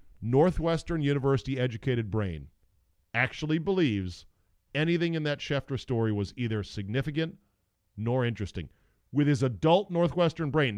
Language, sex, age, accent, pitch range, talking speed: English, male, 40-59, American, 95-140 Hz, 110 wpm